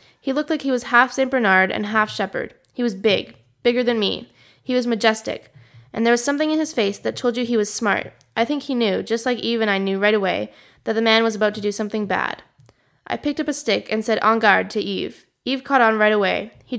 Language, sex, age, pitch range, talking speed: English, female, 10-29, 200-240 Hz, 255 wpm